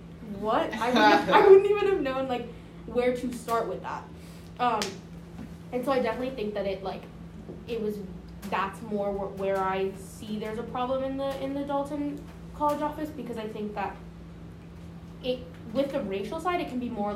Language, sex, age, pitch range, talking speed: English, female, 10-29, 195-250 Hz, 190 wpm